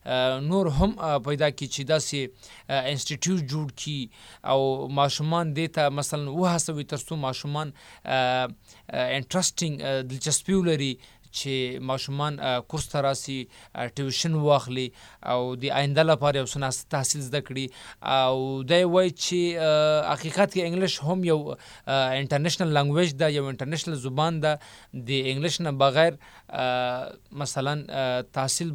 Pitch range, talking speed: 130-155 Hz, 105 wpm